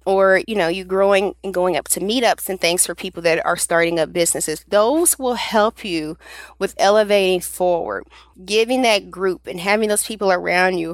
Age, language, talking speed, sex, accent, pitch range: 30-49, English, 190 wpm, female, American, 170-200 Hz